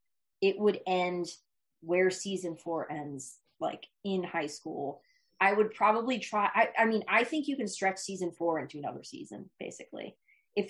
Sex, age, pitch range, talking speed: female, 20-39, 170-210 Hz, 170 wpm